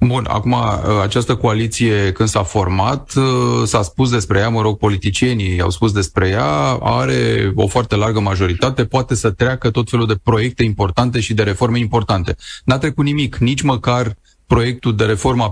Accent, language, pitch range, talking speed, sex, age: native, Romanian, 105-125 Hz, 165 wpm, male, 30-49